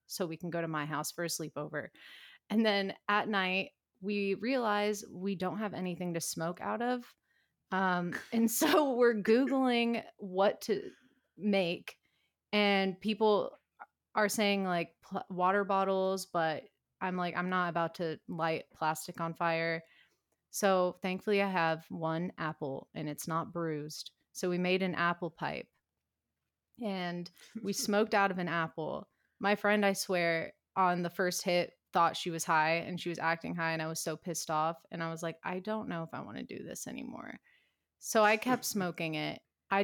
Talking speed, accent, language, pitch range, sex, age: 175 wpm, American, English, 165-205 Hz, female, 30-49